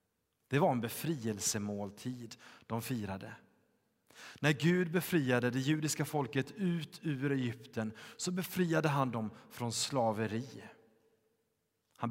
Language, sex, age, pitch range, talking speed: Swedish, male, 30-49, 120-155 Hz, 110 wpm